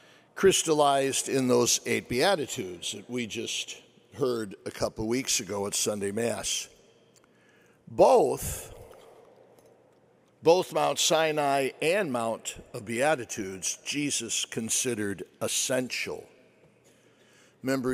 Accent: American